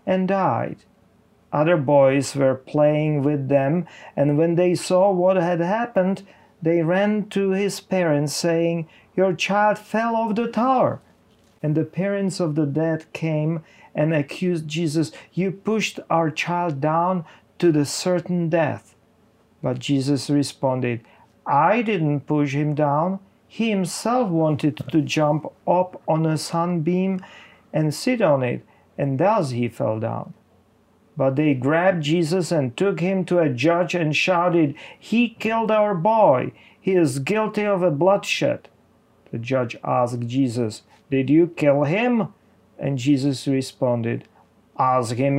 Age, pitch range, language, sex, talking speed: 40-59, 140-190 Hz, English, male, 140 wpm